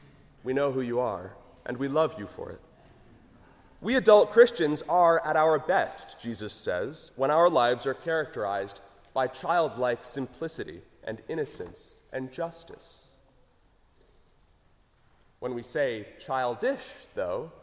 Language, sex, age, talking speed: English, male, 30-49, 125 wpm